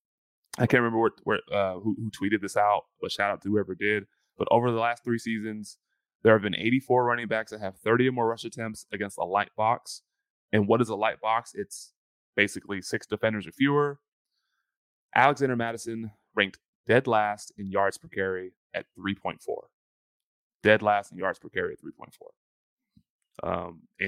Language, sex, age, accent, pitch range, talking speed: English, male, 20-39, American, 95-115 Hz, 170 wpm